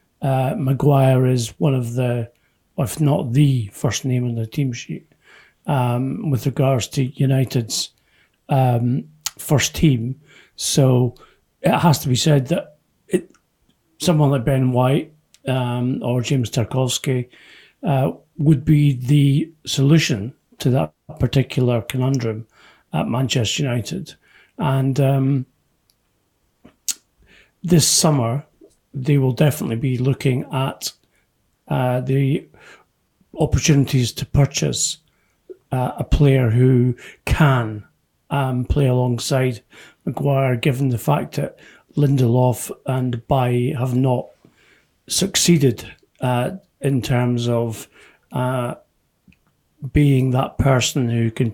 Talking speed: 110 wpm